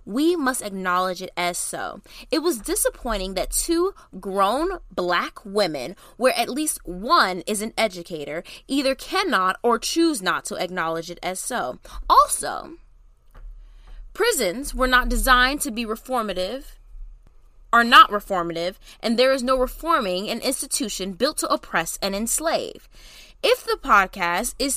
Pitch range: 185-305 Hz